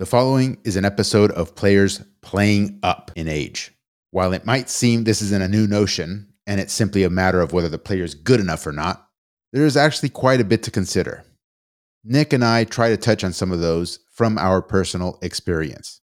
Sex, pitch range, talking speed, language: male, 90-120 Hz, 210 wpm, English